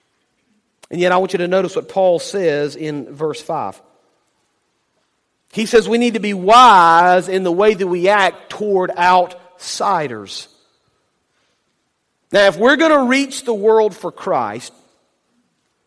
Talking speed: 145 wpm